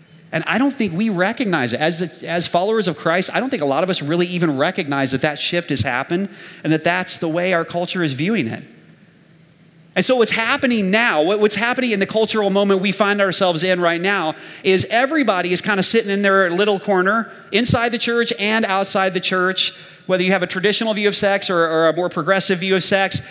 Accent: American